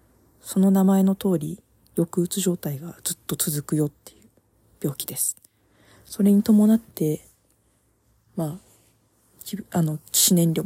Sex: female